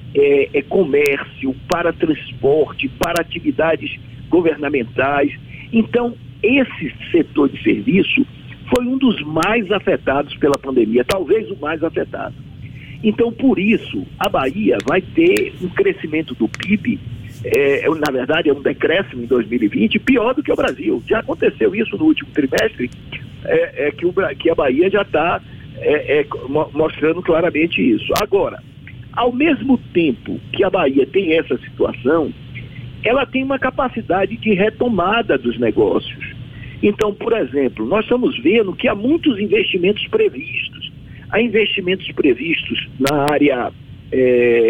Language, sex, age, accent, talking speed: Portuguese, male, 60-79, Brazilian, 130 wpm